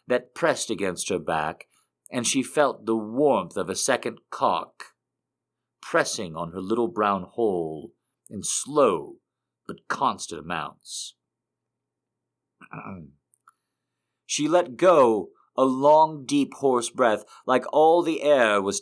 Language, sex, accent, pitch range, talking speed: English, male, American, 100-135 Hz, 120 wpm